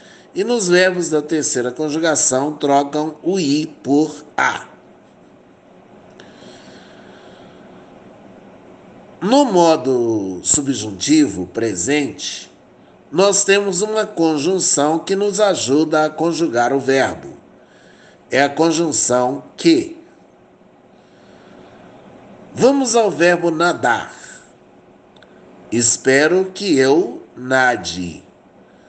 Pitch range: 135-195 Hz